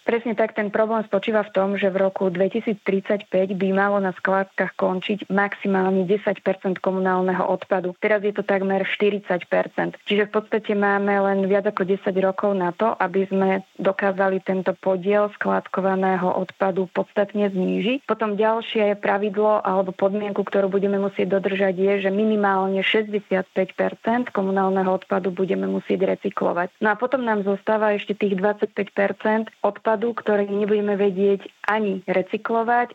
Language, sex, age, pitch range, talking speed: Slovak, female, 20-39, 190-210 Hz, 140 wpm